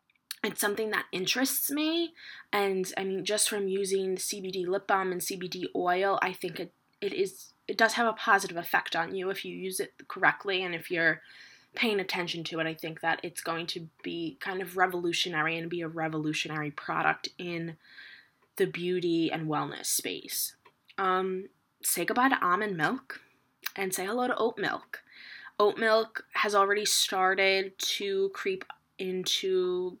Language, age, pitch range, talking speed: English, 10-29, 175-235 Hz, 165 wpm